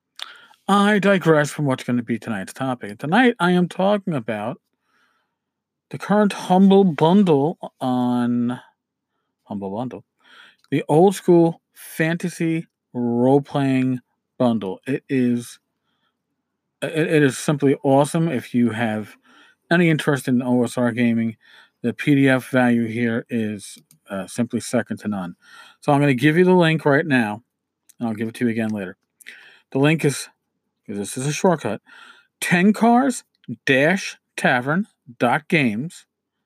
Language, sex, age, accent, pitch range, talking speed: English, male, 40-59, American, 120-175 Hz, 125 wpm